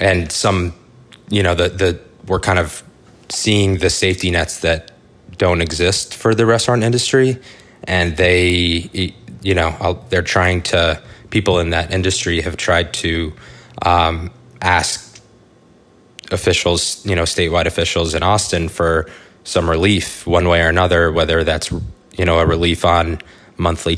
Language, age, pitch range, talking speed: English, 20-39, 80-95 Hz, 145 wpm